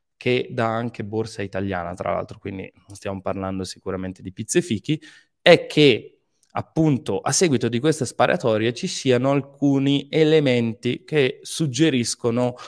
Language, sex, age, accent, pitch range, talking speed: Italian, male, 20-39, native, 105-140 Hz, 135 wpm